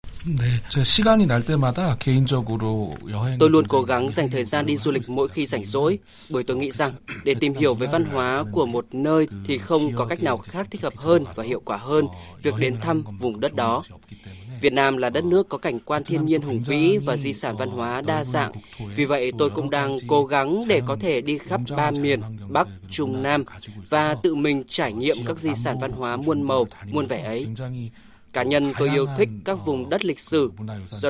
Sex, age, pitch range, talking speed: male, 20-39, 120-150 Hz, 210 wpm